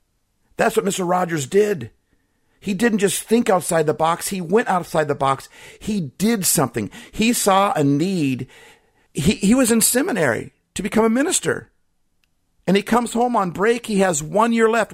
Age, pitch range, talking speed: 50-69, 115-190 Hz, 175 wpm